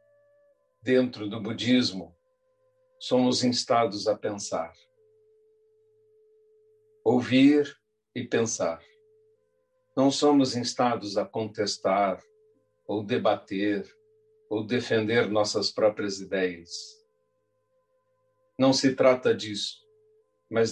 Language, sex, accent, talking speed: Portuguese, male, Brazilian, 80 wpm